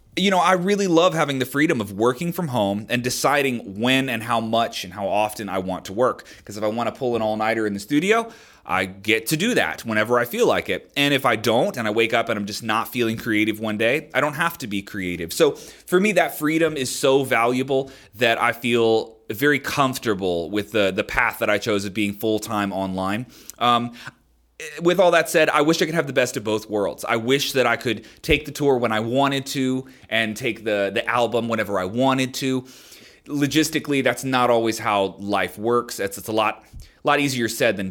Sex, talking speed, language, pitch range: male, 230 wpm, English, 105-145 Hz